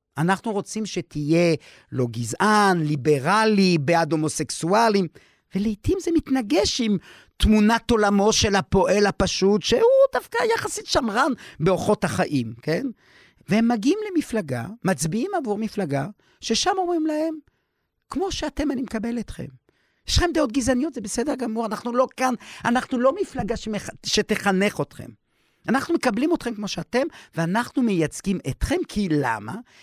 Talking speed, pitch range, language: 130 wpm, 155-250 Hz, Hebrew